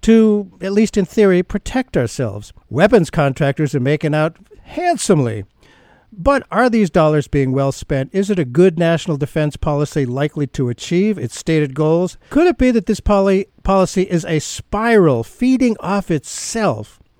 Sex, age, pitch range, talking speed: male, 50-69, 140-200 Hz, 155 wpm